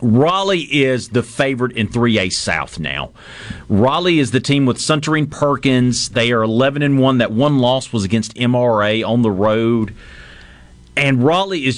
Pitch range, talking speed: 115-145 Hz, 155 wpm